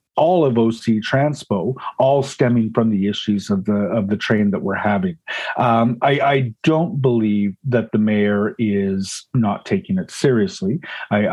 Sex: male